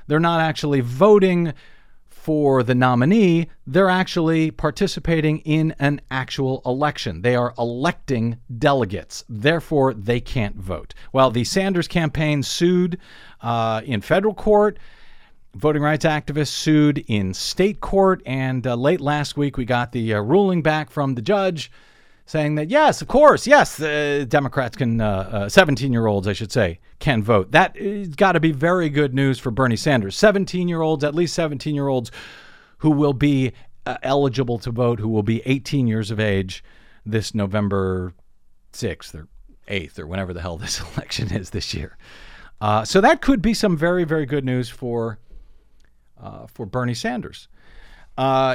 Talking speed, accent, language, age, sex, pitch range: 160 wpm, American, English, 40-59, male, 115-160 Hz